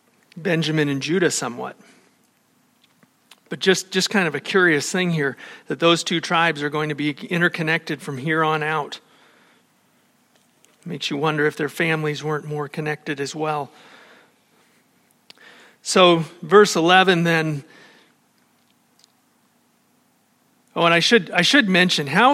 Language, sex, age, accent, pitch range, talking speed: English, male, 40-59, American, 155-210 Hz, 135 wpm